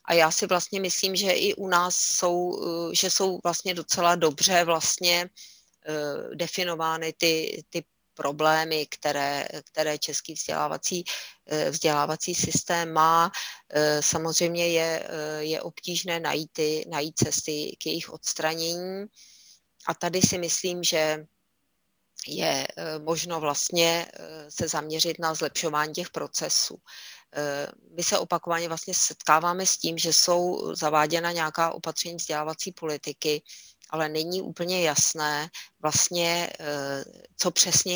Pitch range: 155-180 Hz